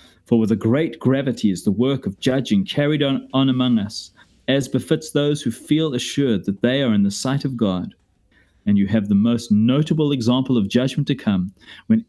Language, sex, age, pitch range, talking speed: English, male, 30-49, 110-145 Hz, 205 wpm